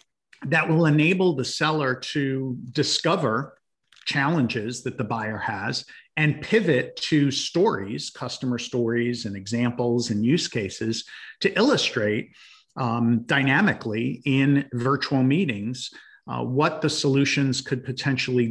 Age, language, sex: 50-69, English, male